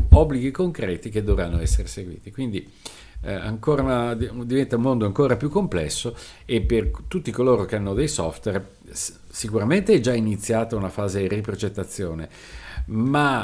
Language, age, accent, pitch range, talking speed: Italian, 50-69, native, 90-130 Hz, 145 wpm